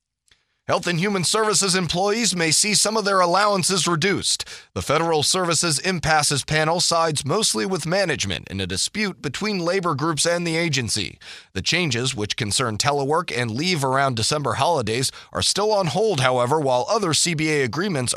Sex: male